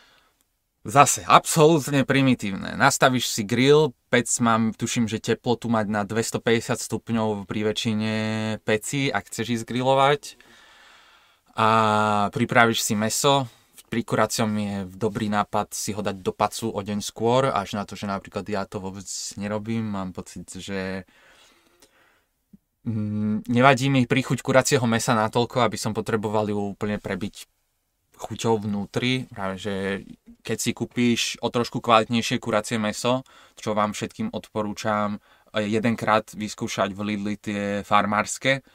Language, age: Slovak, 20-39